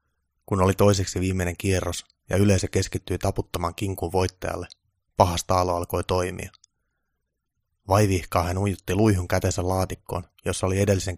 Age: 20-39